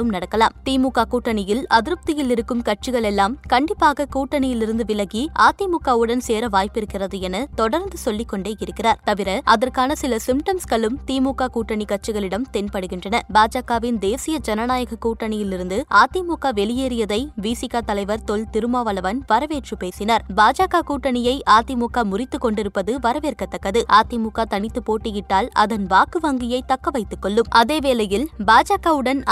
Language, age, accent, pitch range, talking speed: Tamil, 20-39, native, 215-260 Hz, 105 wpm